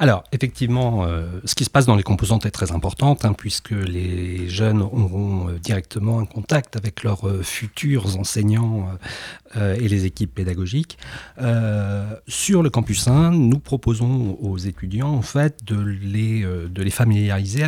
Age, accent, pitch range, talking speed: 40-59, French, 95-115 Hz, 160 wpm